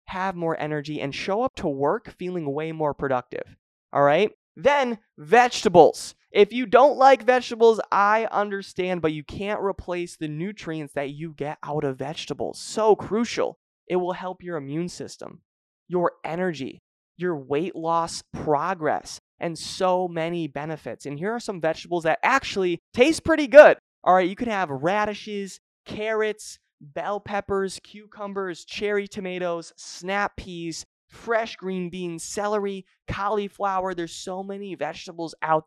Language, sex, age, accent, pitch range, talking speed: English, male, 20-39, American, 165-210 Hz, 145 wpm